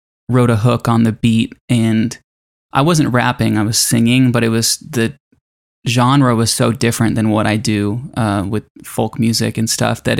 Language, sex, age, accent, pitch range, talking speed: English, male, 10-29, American, 110-125 Hz, 190 wpm